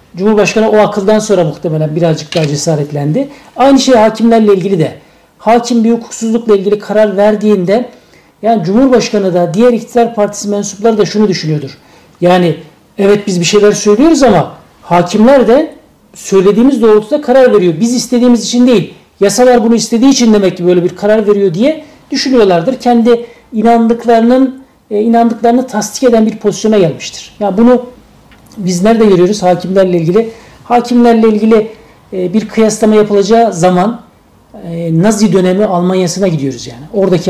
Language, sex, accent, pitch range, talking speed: Turkish, male, native, 185-235 Hz, 140 wpm